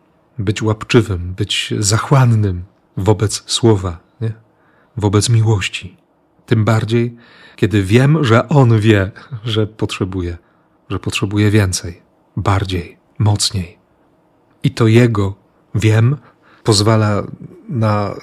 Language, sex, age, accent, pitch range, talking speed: Polish, male, 40-59, native, 105-130 Hz, 90 wpm